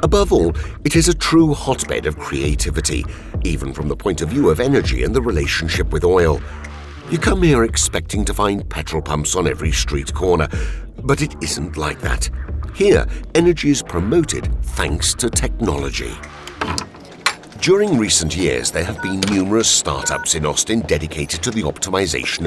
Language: Italian